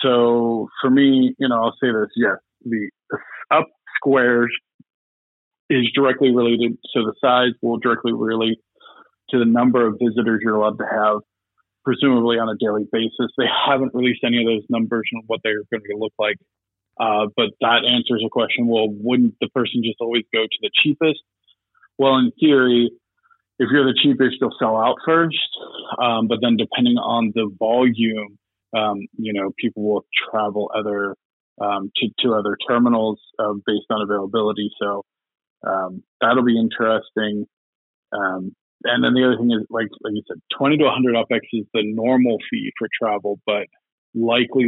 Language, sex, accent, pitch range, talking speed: English, male, American, 110-125 Hz, 170 wpm